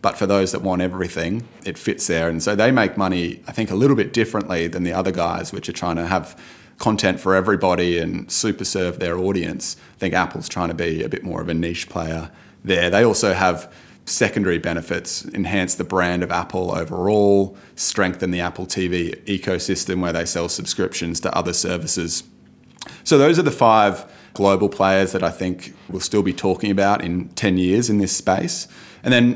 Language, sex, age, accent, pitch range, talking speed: English, male, 20-39, Australian, 90-105 Hz, 200 wpm